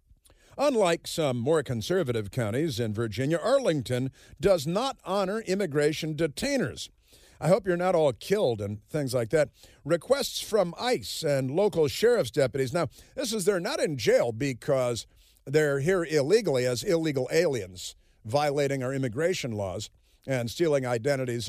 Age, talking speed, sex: 50-69, 140 wpm, male